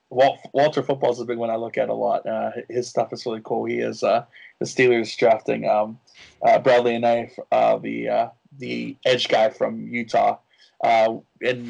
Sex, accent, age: male, American, 20-39